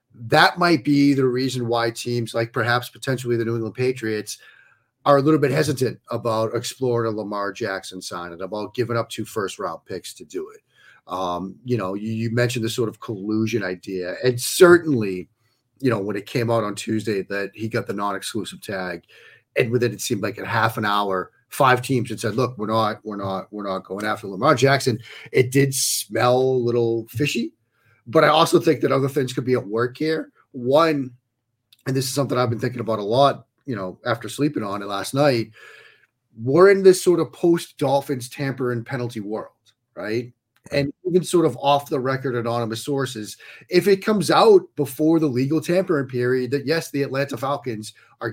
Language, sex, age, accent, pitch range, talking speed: English, male, 40-59, American, 110-140 Hz, 195 wpm